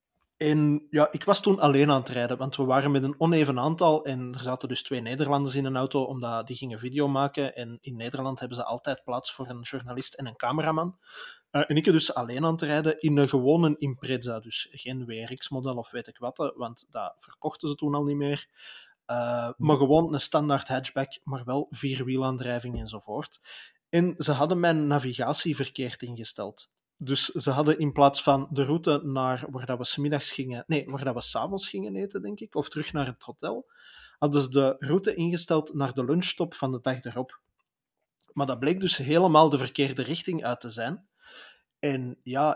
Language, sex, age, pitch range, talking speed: Dutch, male, 20-39, 130-155 Hz, 190 wpm